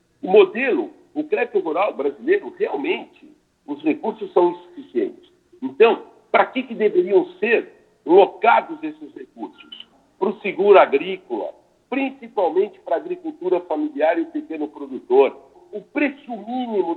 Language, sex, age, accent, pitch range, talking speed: Portuguese, male, 60-79, Brazilian, 225-375 Hz, 125 wpm